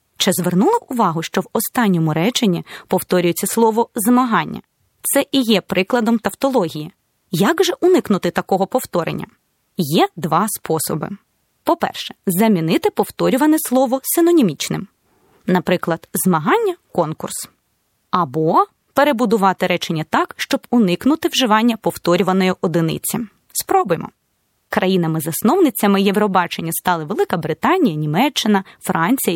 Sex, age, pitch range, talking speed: female, 20-39, 175-265 Hz, 100 wpm